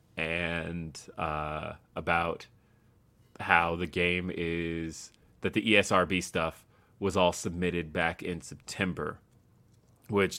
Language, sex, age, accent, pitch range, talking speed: English, male, 20-39, American, 85-105 Hz, 105 wpm